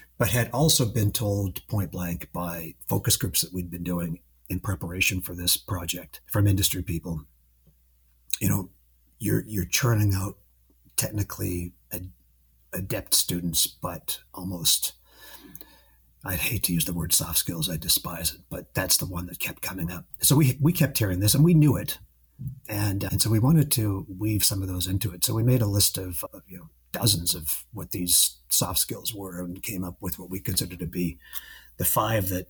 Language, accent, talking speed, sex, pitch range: English, American, 190 wpm, male, 90-105 Hz